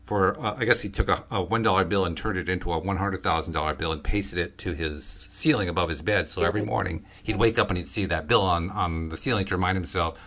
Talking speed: 280 wpm